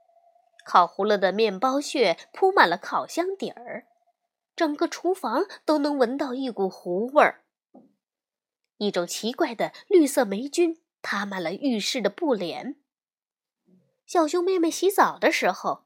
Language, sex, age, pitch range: Chinese, female, 20-39, 235-345 Hz